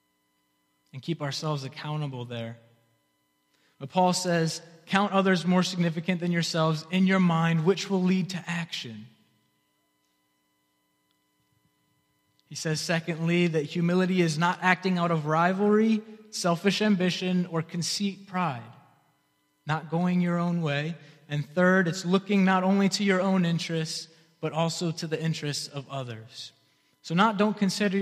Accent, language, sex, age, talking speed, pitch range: American, English, male, 20-39, 135 wpm, 135-175 Hz